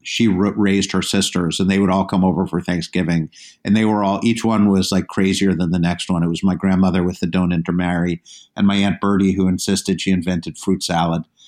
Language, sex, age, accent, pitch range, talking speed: English, male, 50-69, American, 90-100 Hz, 225 wpm